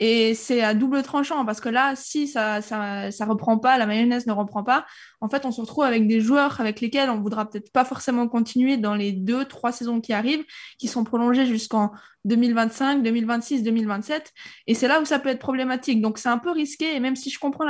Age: 20-39